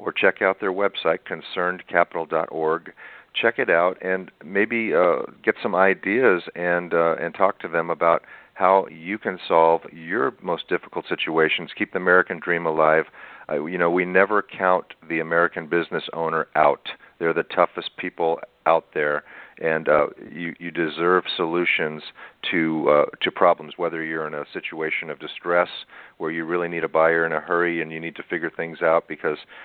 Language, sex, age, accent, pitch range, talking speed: English, male, 50-69, American, 80-90 Hz, 175 wpm